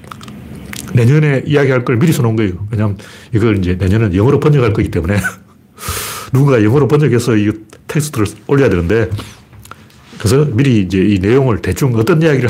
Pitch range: 105-150 Hz